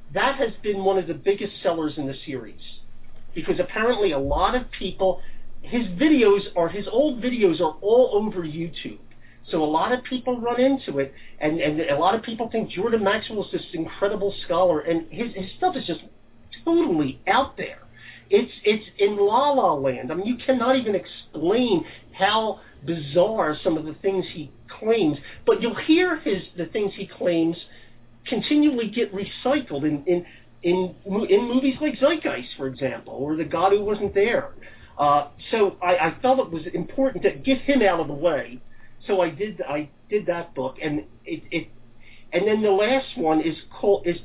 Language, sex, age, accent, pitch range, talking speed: English, male, 40-59, American, 150-225 Hz, 185 wpm